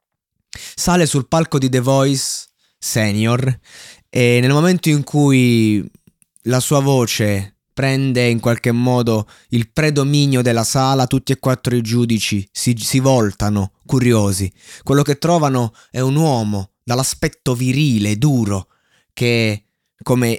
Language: Italian